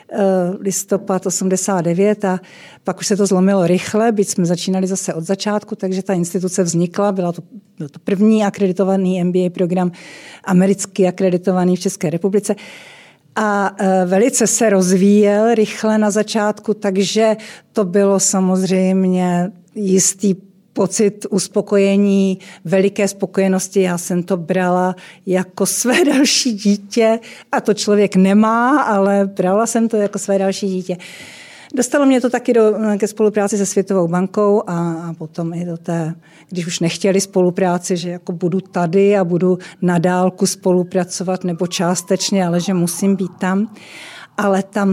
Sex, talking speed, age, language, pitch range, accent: female, 140 wpm, 50-69, Czech, 185-205 Hz, native